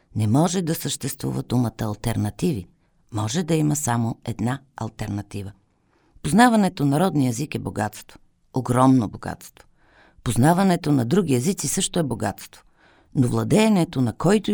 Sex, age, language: female, 50-69, Bulgarian